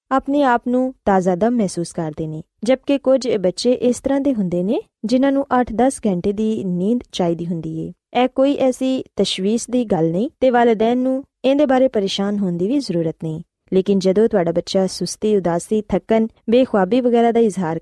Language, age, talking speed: Punjabi, 20-39, 200 wpm